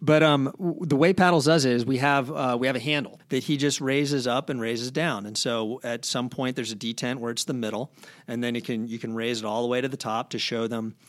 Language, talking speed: English, 285 wpm